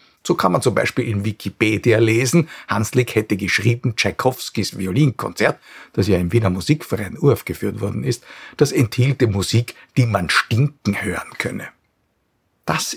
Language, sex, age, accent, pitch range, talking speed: German, male, 50-69, Austrian, 105-145 Hz, 145 wpm